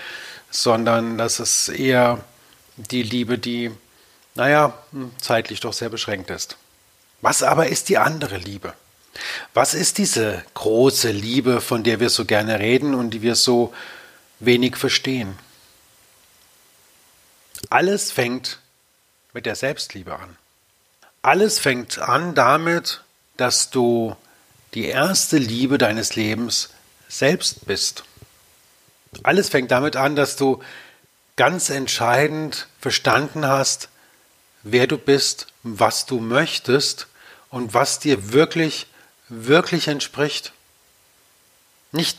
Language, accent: German, German